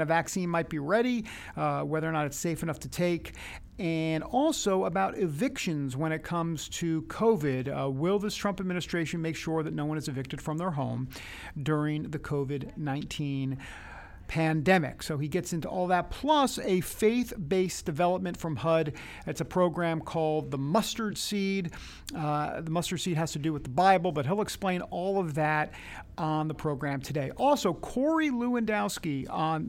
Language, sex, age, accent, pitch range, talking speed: English, male, 50-69, American, 150-185 Hz, 170 wpm